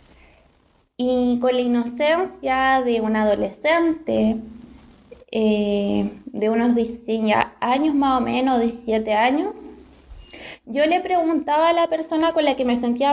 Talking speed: 130 wpm